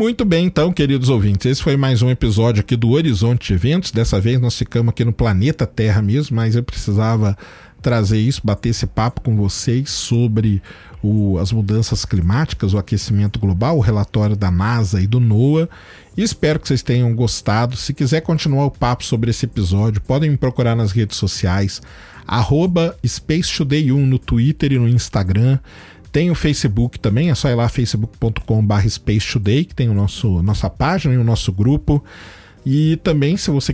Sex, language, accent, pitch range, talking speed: male, Portuguese, Brazilian, 105-140 Hz, 180 wpm